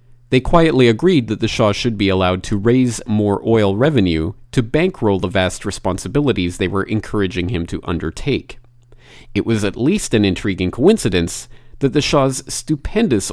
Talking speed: 160 wpm